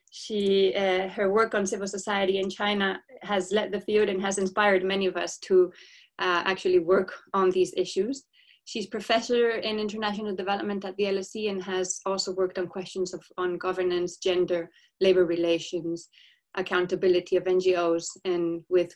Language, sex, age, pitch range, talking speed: English, female, 20-39, 180-220 Hz, 160 wpm